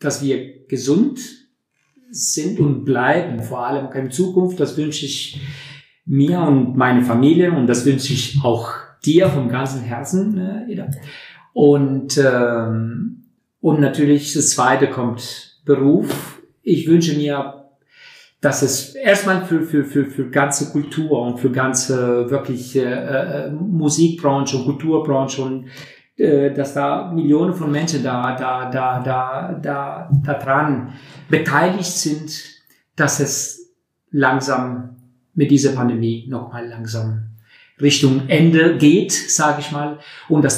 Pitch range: 130-155 Hz